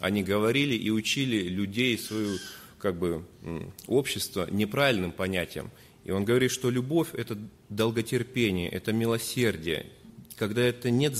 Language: Russian